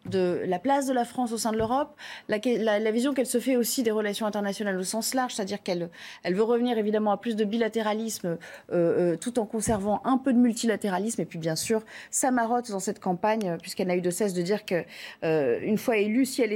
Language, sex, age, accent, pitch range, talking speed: French, female, 30-49, French, 200-255 Hz, 235 wpm